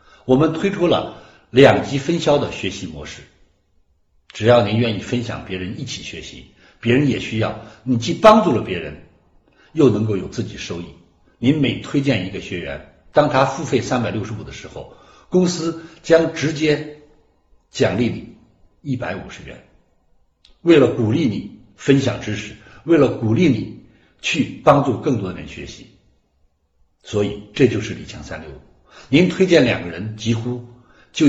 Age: 60-79